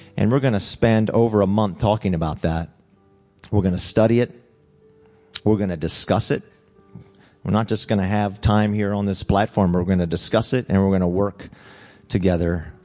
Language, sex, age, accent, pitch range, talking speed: English, male, 40-59, American, 90-110 Hz, 200 wpm